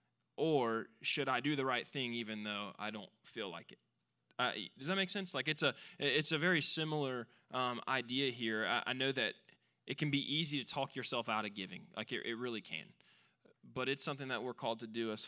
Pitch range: 110-135 Hz